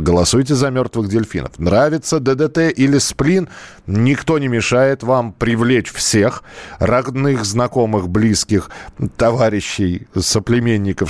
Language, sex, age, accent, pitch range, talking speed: Russian, male, 40-59, native, 100-145 Hz, 105 wpm